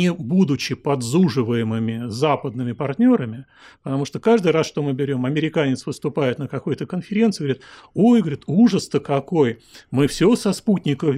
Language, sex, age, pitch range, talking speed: Russian, male, 40-59, 140-170 Hz, 135 wpm